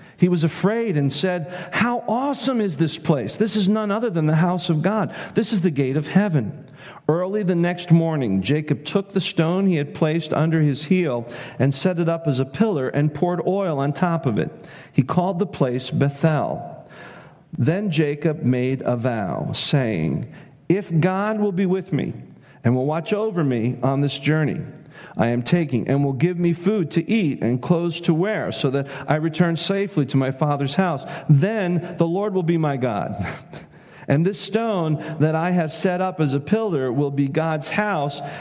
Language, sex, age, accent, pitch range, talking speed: English, male, 40-59, American, 140-180 Hz, 190 wpm